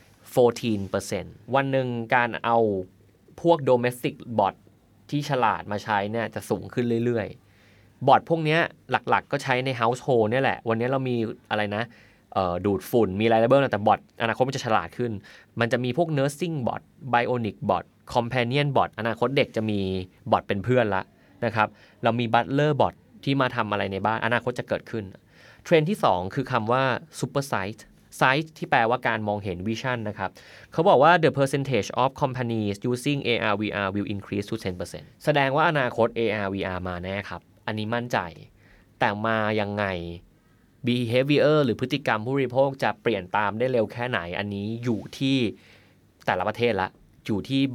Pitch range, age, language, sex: 105-130 Hz, 20-39, Thai, male